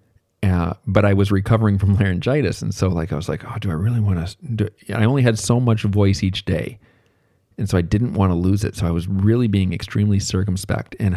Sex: male